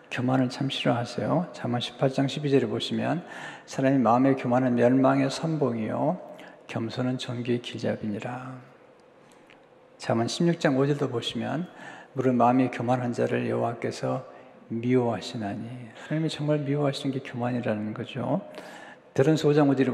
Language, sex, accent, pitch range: Korean, male, native, 120-150 Hz